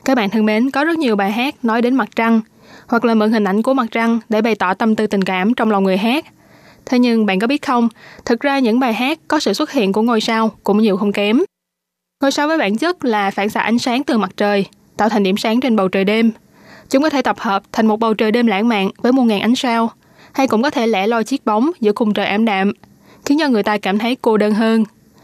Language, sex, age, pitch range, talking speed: Vietnamese, female, 20-39, 210-250 Hz, 270 wpm